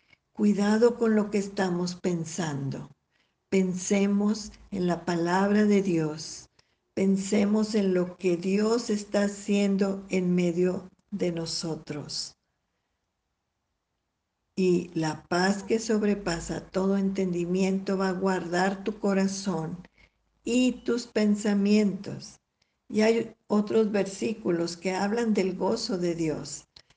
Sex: female